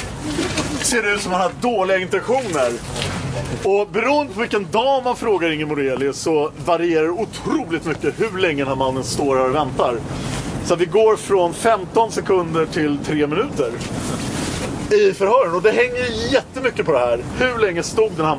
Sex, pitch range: male, 150-220 Hz